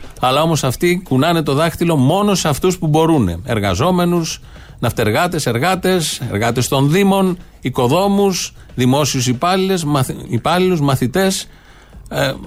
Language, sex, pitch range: Greek, male, 120-165 Hz